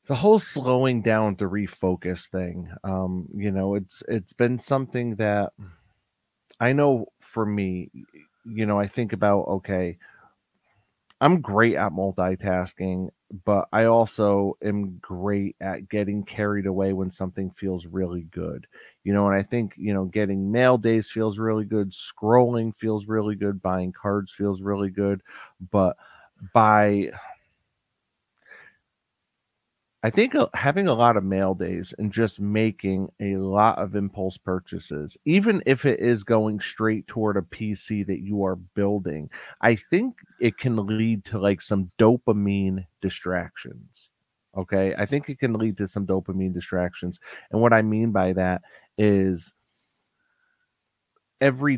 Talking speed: 145 wpm